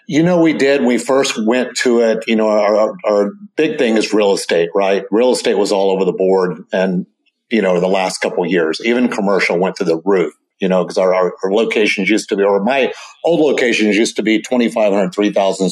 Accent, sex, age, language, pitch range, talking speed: American, male, 50-69, English, 100-140 Hz, 220 wpm